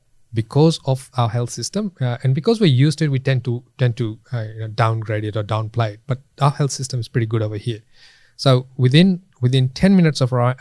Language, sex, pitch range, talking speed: English, male, 115-140 Hz, 220 wpm